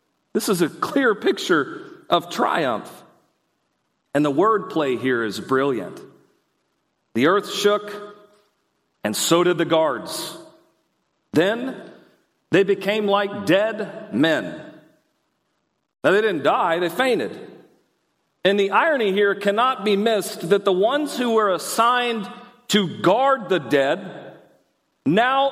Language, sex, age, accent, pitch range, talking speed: English, male, 40-59, American, 180-230 Hz, 120 wpm